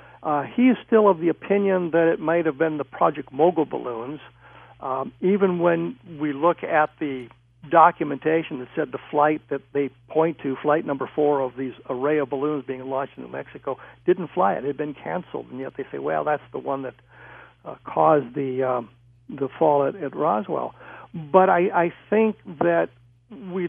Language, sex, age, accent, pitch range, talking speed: English, male, 60-79, American, 140-170 Hz, 195 wpm